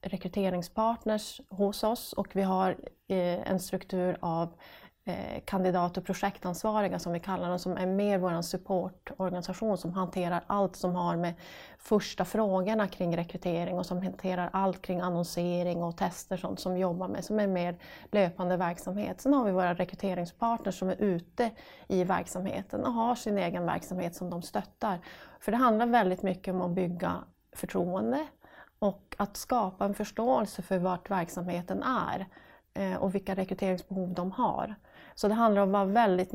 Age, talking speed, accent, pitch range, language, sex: 30-49, 160 wpm, native, 180-210 Hz, Swedish, female